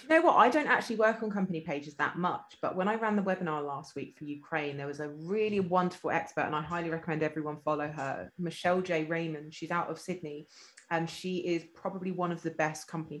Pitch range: 155-185 Hz